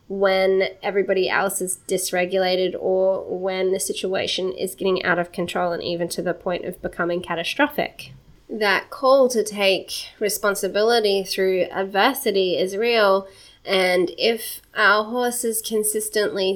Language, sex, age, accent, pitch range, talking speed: English, female, 10-29, Australian, 180-210 Hz, 130 wpm